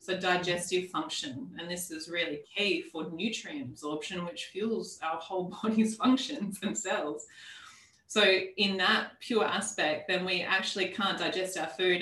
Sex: female